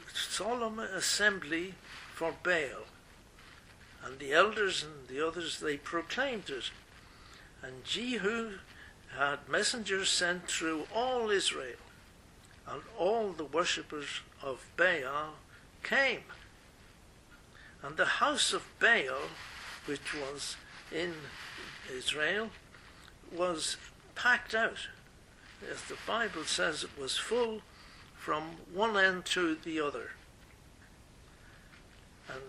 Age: 60-79